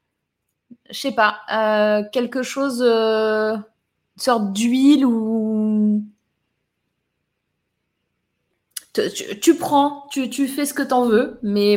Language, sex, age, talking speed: French, female, 20-39, 105 wpm